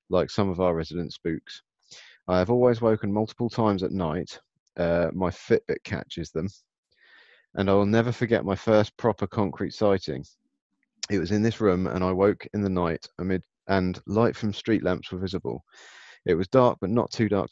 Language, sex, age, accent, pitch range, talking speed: English, male, 30-49, British, 90-105 Hz, 185 wpm